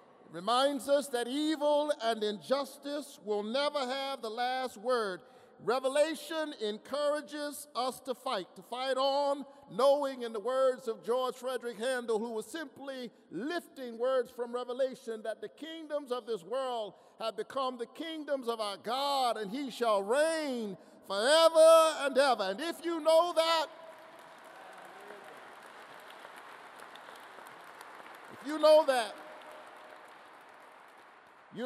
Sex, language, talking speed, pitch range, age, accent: male, English, 125 wpm, 190-275 Hz, 50-69, American